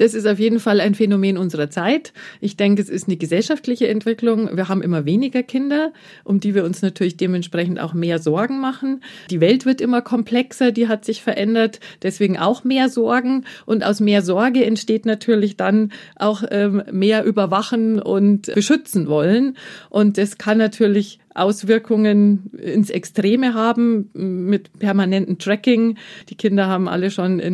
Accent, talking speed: German, 160 wpm